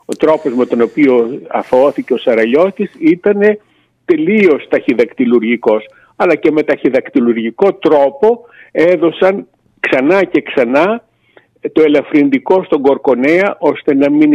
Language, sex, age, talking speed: Greek, male, 50-69, 115 wpm